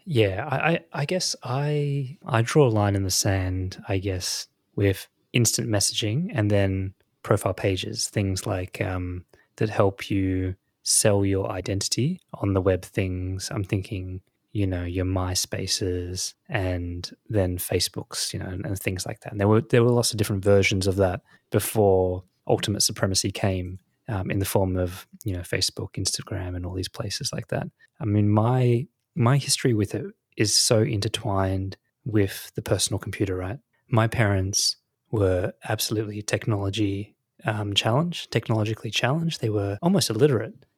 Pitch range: 95-120 Hz